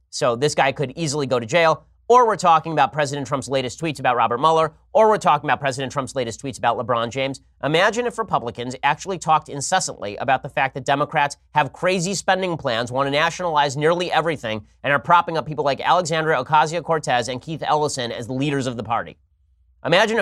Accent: American